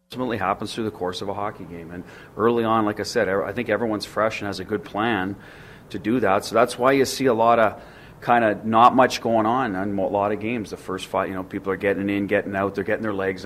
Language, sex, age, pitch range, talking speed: English, male, 40-59, 95-110 Hz, 265 wpm